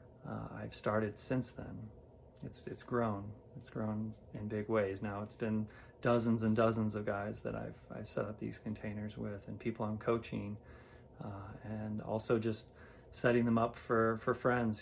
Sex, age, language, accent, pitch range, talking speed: male, 30-49, English, American, 105-115 Hz, 175 wpm